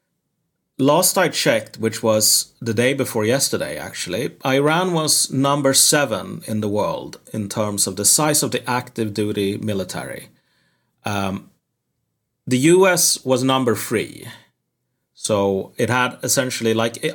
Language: English